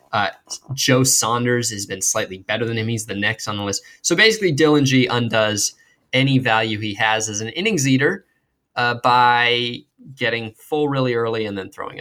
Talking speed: 185 wpm